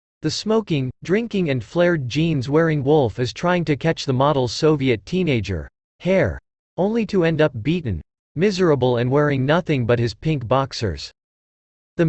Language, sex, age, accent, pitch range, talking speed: English, male, 40-59, American, 130-175 Hz, 155 wpm